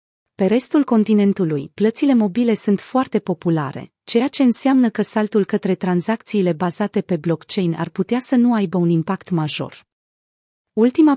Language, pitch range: Romanian, 170-225 Hz